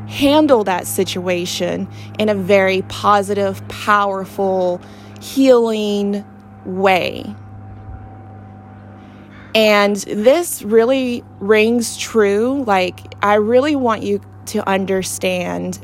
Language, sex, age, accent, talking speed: English, female, 20-39, American, 85 wpm